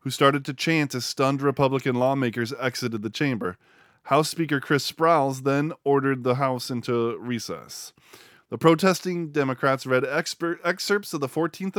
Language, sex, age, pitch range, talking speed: English, male, 20-39, 125-160 Hz, 150 wpm